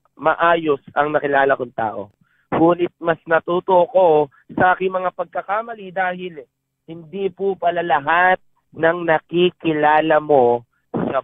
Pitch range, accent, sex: 135-180 Hz, native, male